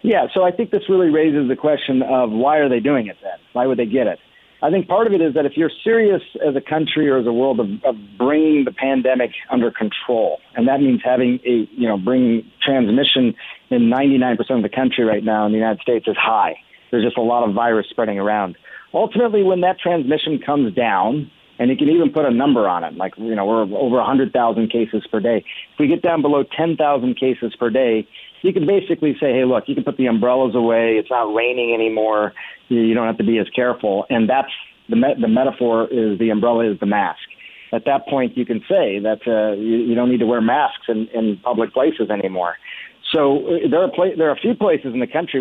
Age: 40-59